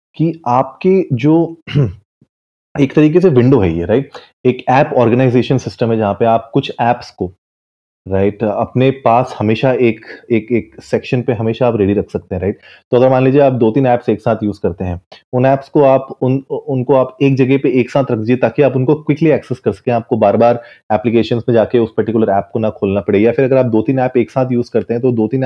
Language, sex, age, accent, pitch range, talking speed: Hindi, male, 30-49, native, 115-140 Hz, 240 wpm